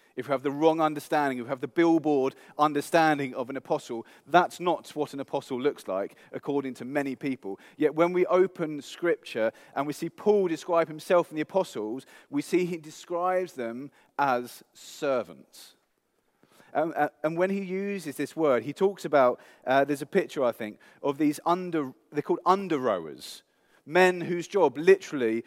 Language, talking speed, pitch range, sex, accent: English, 175 wpm, 140-175 Hz, male, British